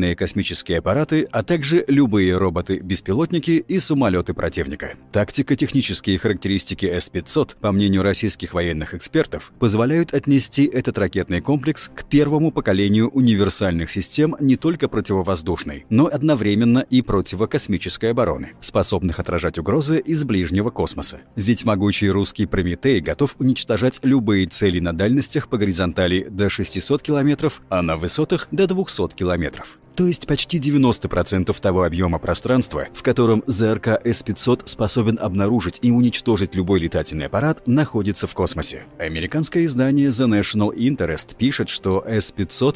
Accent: native